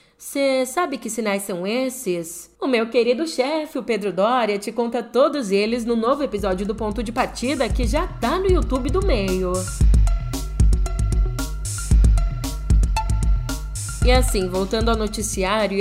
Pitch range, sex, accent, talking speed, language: 190-245 Hz, female, Brazilian, 135 wpm, Portuguese